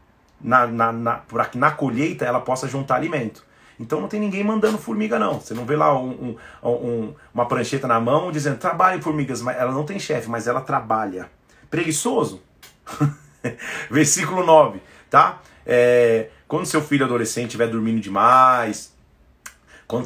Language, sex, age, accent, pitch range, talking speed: Portuguese, male, 30-49, Brazilian, 120-195 Hz, 155 wpm